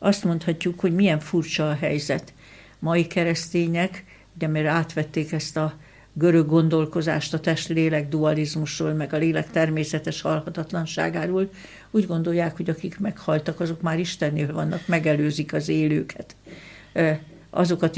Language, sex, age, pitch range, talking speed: Hungarian, female, 60-79, 155-170 Hz, 125 wpm